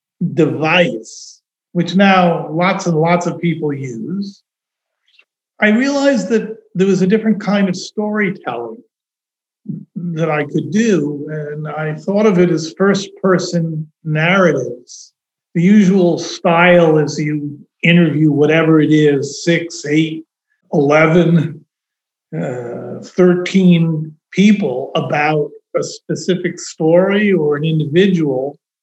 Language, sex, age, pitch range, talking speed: English, male, 50-69, 155-200 Hz, 110 wpm